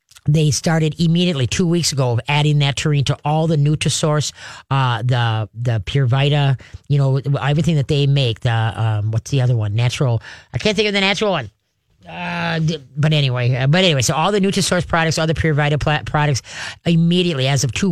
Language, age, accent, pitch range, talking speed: English, 40-59, American, 130-165 Hz, 200 wpm